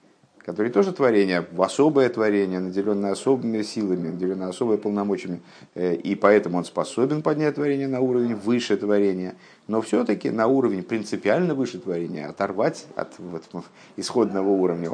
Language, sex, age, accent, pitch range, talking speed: Russian, male, 50-69, native, 95-135 Hz, 130 wpm